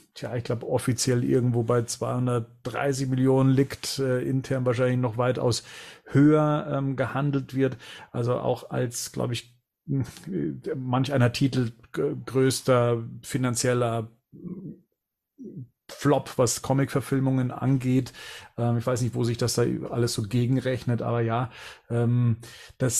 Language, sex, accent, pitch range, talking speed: German, male, German, 120-135 Hz, 125 wpm